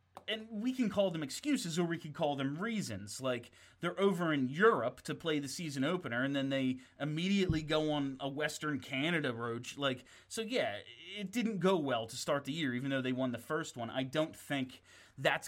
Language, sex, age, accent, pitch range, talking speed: English, male, 30-49, American, 115-155 Hz, 210 wpm